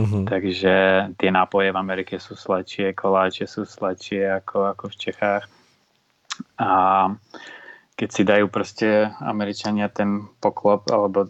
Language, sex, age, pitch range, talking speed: Czech, male, 20-39, 100-110 Hz, 115 wpm